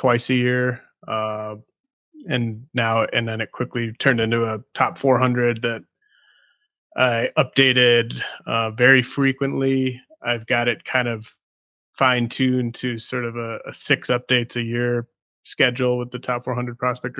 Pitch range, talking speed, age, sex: 115-130 Hz, 145 wpm, 20-39, male